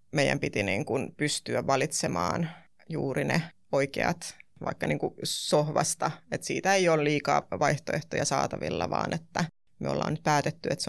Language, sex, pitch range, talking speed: Finnish, female, 140-170 Hz, 150 wpm